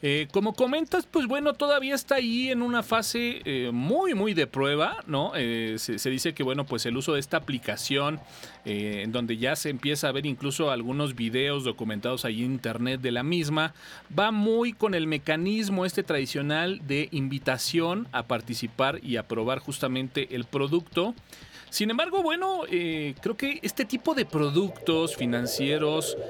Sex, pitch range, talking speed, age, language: male, 125-170 Hz, 170 wpm, 40-59, Spanish